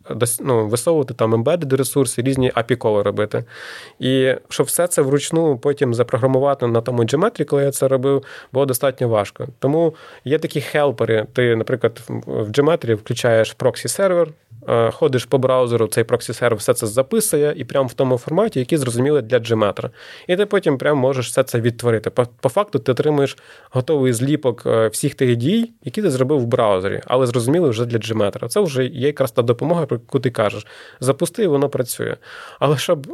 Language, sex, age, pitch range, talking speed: Ukrainian, male, 20-39, 120-145 Hz, 165 wpm